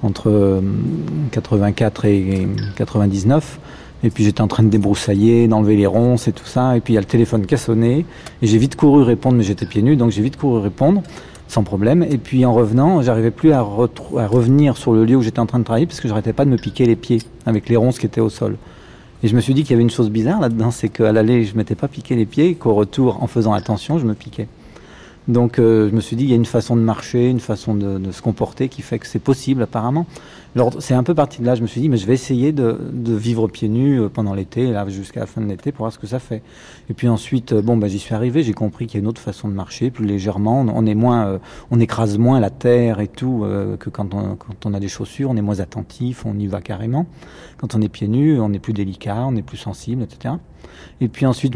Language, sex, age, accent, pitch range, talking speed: French, male, 40-59, French, 105-125 Hz, 270 wpm